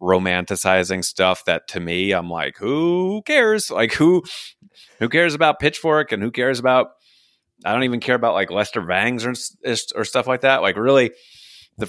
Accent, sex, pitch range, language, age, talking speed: American, male, 95-145 Hz, English, 30-49, 175 wpm